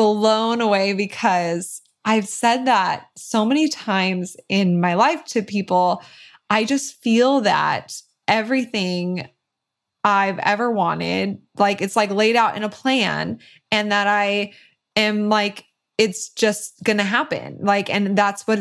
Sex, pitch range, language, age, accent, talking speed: female, 200-230 Hz, English, 20-39, American, 140 wpm